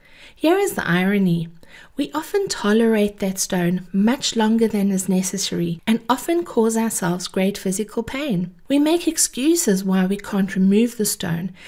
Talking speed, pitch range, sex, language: 155 wpm, 195-260 Hz, female, English